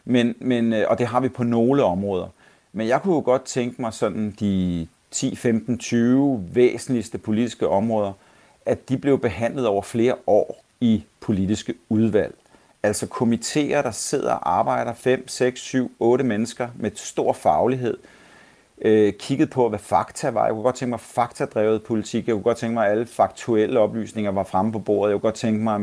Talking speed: 190 wpm